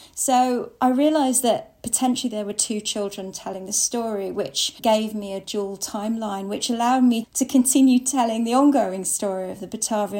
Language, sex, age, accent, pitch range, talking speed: English, female, 40-59, British, 205-250 Hz, 175 wpm